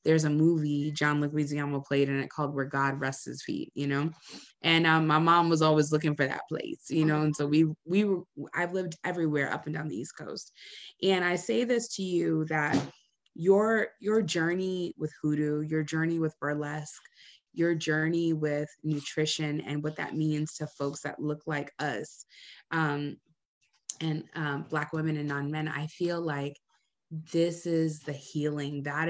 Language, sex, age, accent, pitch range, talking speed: English, female, 20-39, American, 150-170 Hz, 175 wpm